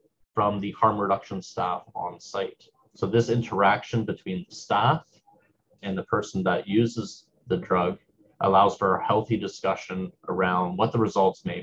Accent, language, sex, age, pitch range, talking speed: American, English, male, 30-49, 100-120 Hz, 155 wpm